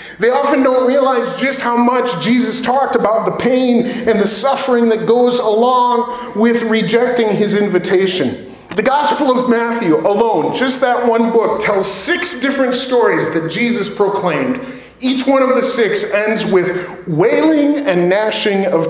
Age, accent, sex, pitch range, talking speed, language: 40-59, American, male, 155-240 Hz, 155 wpm, English